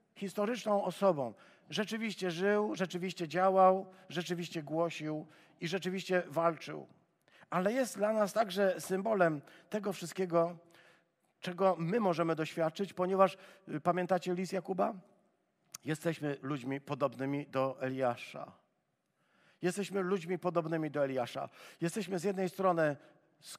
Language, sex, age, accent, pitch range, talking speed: Polish, male, 50-69, native, 120-175 Hz, 105 wpm